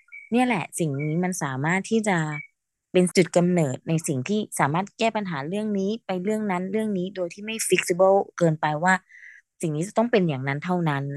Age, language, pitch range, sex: 20-39, Thai, 165-210 Hz, female